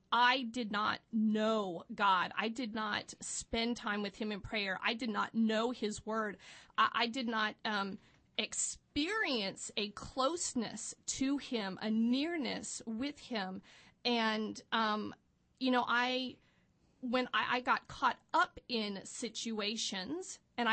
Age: 40-59